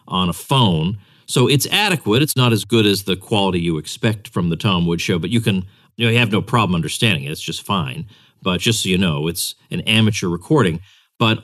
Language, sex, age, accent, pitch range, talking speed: English, male, 40-59, American, 95-120 Hz, 230 wpm